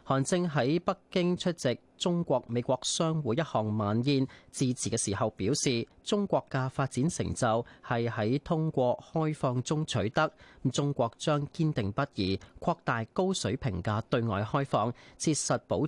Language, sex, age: Chinese, male, 30-49